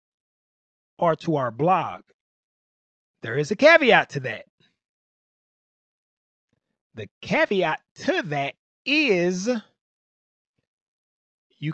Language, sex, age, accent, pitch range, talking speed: English, male, 30-49, American, 115-150 Hz, 80 wpm